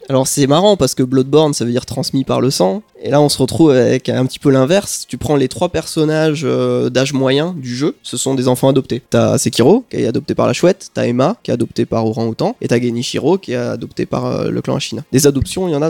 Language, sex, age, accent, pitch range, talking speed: French, male, 20-39, French, 120-155 Hz, 260 wpm